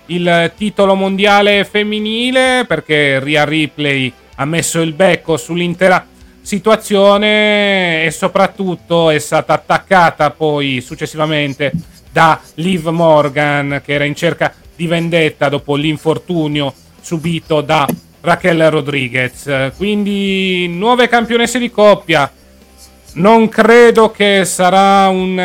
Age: 30-49